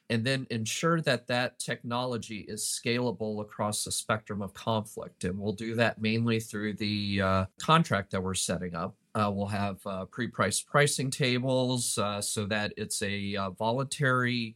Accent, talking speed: American, 165 wpm